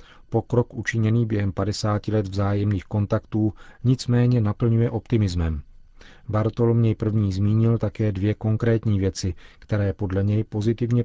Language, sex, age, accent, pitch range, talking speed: Czech, male, 40-59, native, 100-115 Hz, 115 wpm